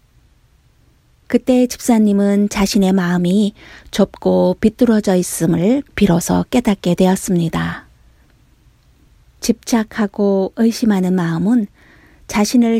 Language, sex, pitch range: Korean, female, 180-225 Hz